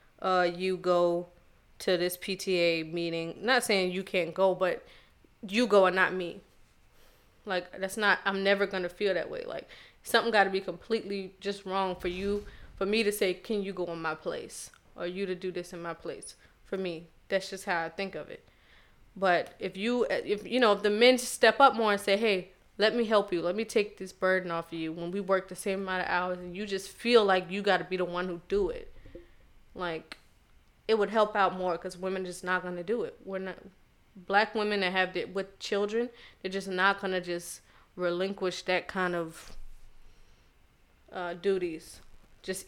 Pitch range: 180-200 Hz